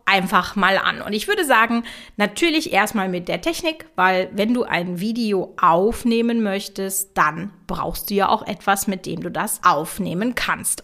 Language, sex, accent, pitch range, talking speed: German, female, German, 185-240 Hz, 170 wpm